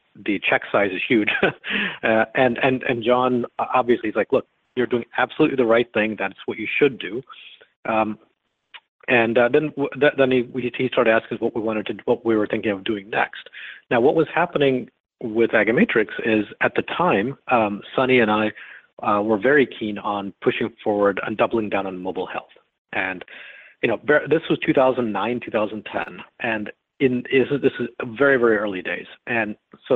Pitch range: 105-125 Hz